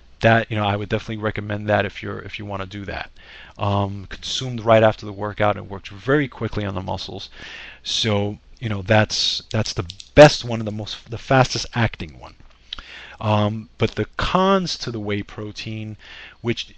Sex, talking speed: male, 190 wpm